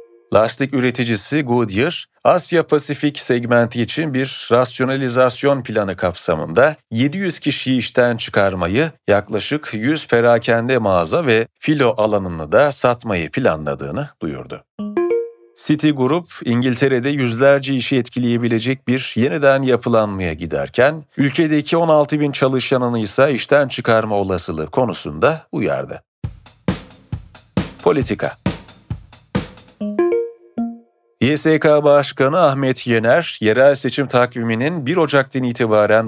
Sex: male